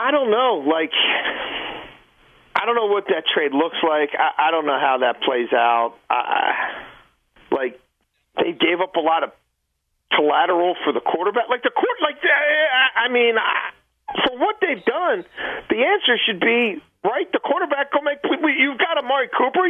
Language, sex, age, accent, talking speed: English, male, 40-59, American, 175 wpm